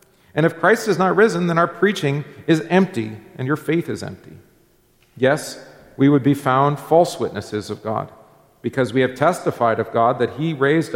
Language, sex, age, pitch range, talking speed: English, male, 40-59, 110-145 Hz, 185 wpm